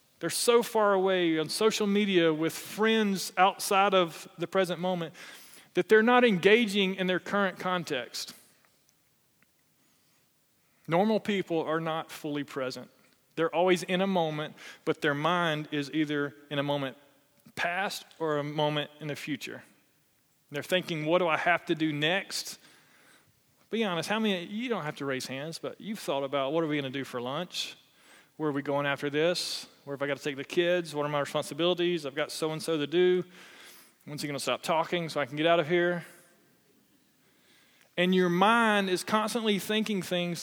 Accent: American